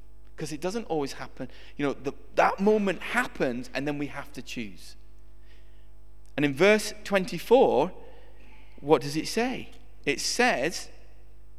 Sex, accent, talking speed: male, British, 135 wpm